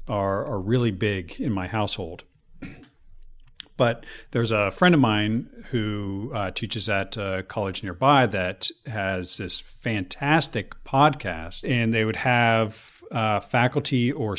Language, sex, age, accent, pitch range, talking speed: English, male, 40-59, American, 95-125 Hz, 130 wpm